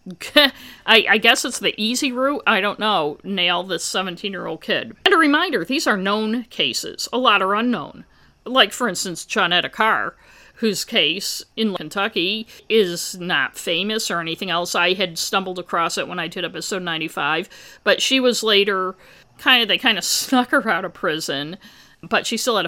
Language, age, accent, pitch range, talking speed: English, 50-69, American, 175-230 Hz, 185 wpm